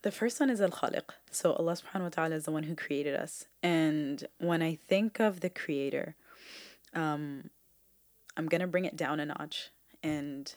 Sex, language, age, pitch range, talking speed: female, English, 20-39, 150-170 Hz, 185 wpm